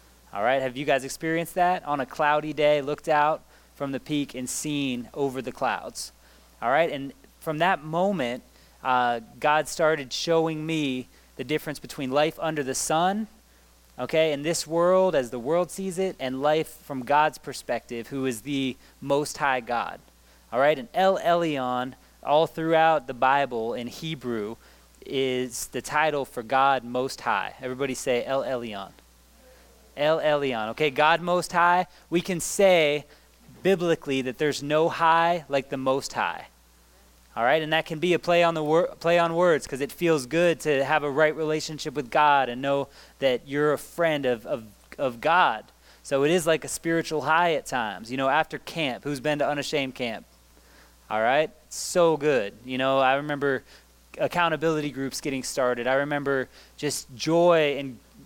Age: 20-39